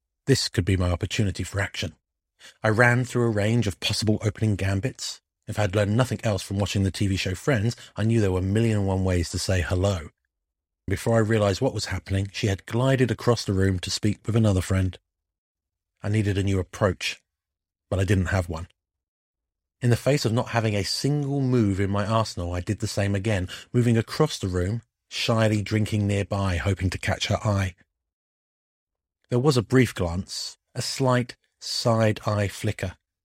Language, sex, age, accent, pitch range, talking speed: English, male, 30-49, British, 90-115 Hz, 190 wpm